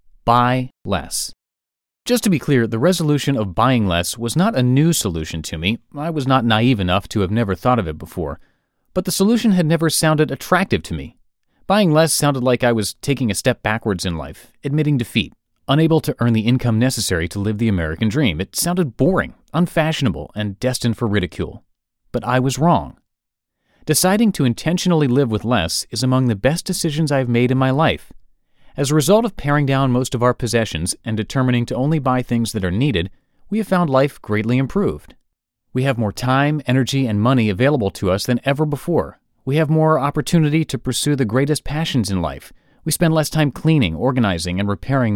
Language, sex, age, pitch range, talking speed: English, male, 30-49, 110-150 Hz, 200 wpm